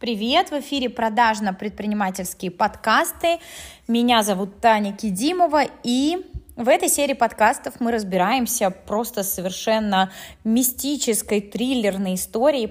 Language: Russian